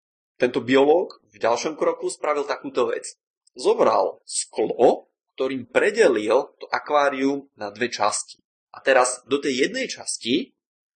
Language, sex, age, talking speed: Czech, male, 20-39, 125 wpm